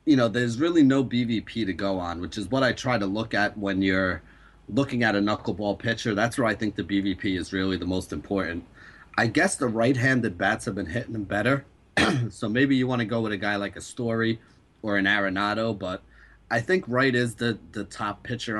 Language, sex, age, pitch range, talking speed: English, male, 30-49, 100-125 Hz, 225 wpm